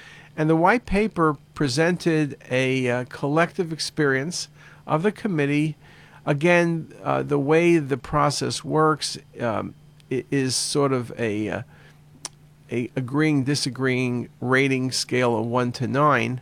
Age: 50-69